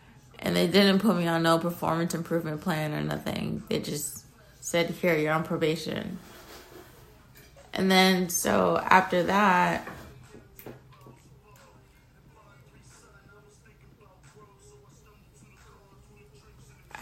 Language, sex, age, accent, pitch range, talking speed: English, female, 30-49, American, 155-180 Hz, 85 wpm